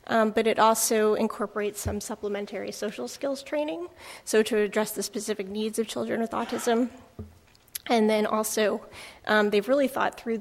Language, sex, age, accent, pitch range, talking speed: English, female, 30-49, American, 205-230 Hz, 160 wpm